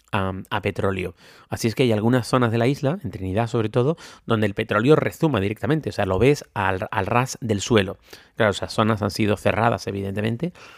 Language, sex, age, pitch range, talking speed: Spanish, male, 30-49, 100-125 Hz, 205 wpm